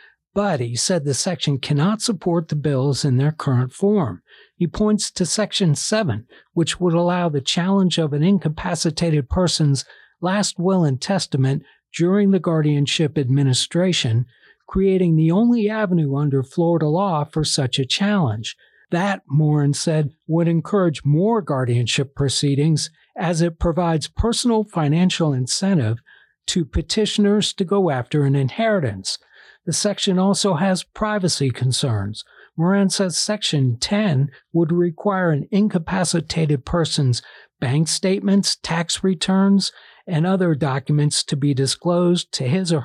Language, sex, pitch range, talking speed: English, male, 145-190 Hz, 135 wpm